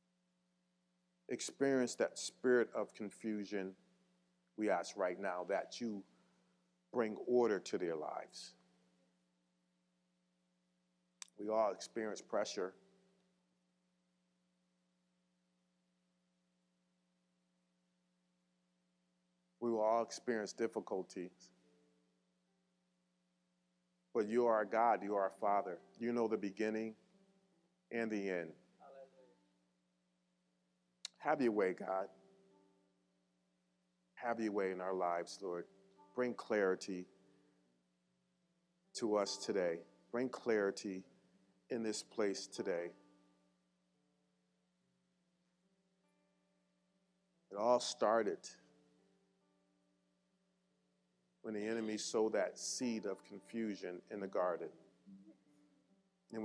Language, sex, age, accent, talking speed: English, male, 40-59, American, 80 wpm